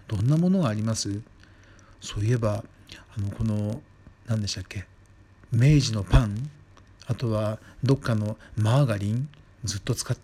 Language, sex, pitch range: Japanese, male, 105-140 Hz